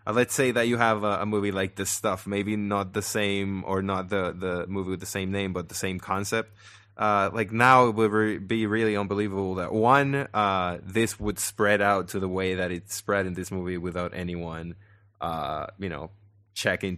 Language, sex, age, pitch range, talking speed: English, male, 20-39, 95-115 Hz, 200 wpm